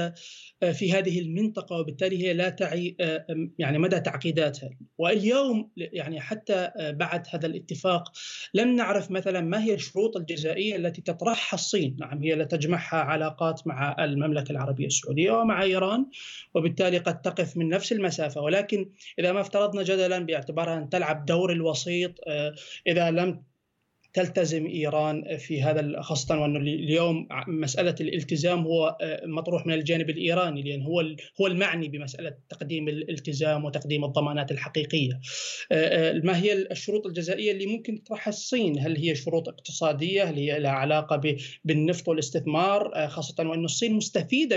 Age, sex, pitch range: 20-39, male, 155-190 Hz